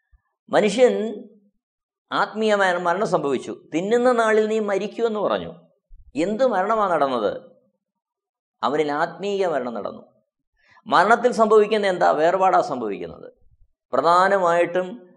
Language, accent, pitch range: Malayalam, native, 165-220 Hz